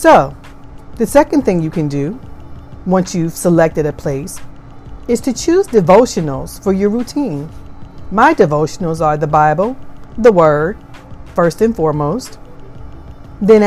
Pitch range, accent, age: 150-210 Hz, American, 40-59